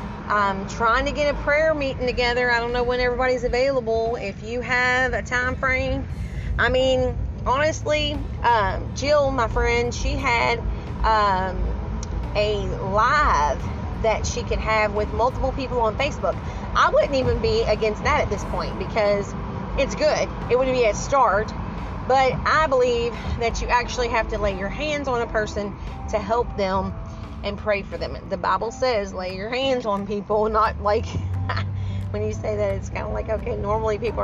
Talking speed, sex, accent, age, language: 175 wpm, female, American, 30-49, English